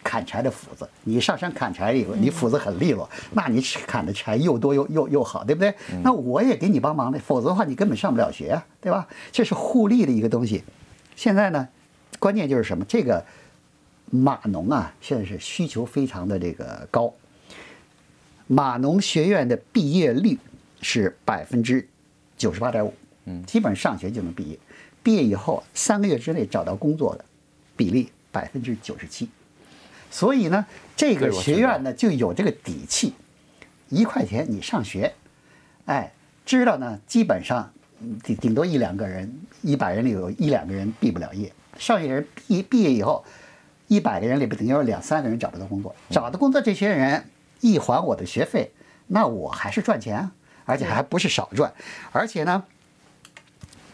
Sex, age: male, 50-69